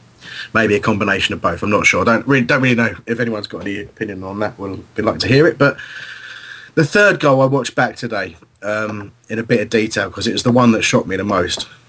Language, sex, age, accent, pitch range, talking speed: English, male, 30-49, British, 105-120 Hz, 250 wpm